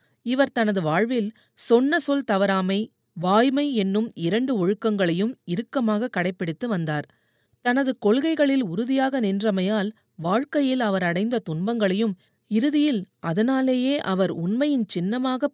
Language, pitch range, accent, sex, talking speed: Tamil, 180-255 Hz, native, female, 95 wpm